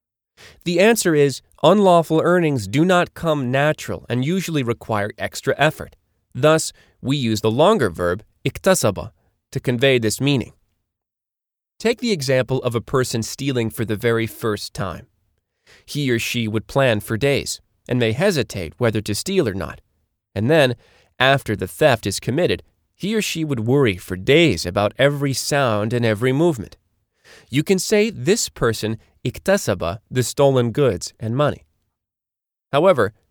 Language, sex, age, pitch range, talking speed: English, male, 30-49, 105-145 Hz, 150 wpm